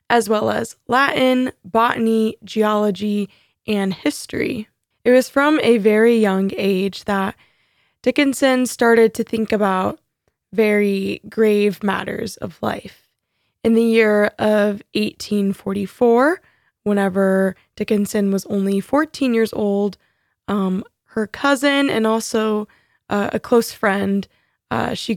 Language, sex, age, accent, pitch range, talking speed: English, female, 20-39, American, 200-240 Hz, 115 wpm